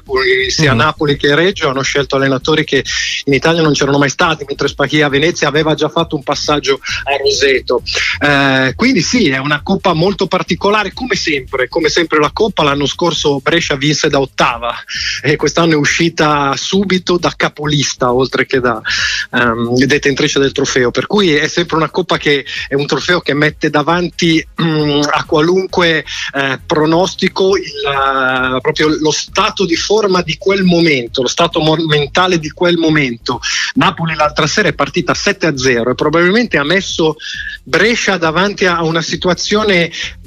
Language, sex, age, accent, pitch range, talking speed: Italian, male, 30-49, native, 145-180 Hz, 155 wpm